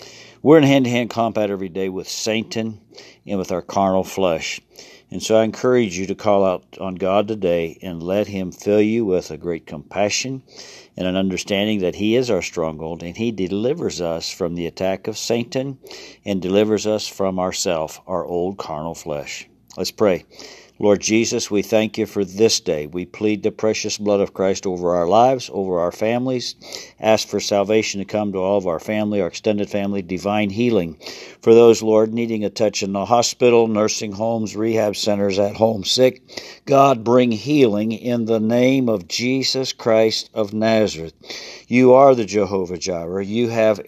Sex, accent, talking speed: male, American, 180 wpm